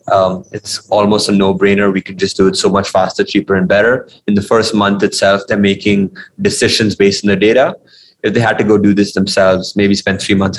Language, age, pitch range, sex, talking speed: English, 20-39, 100-105 Hz, male, 225 wpm